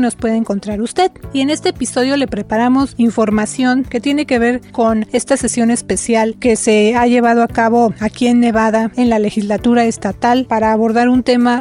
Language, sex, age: Spanish, female, 40-59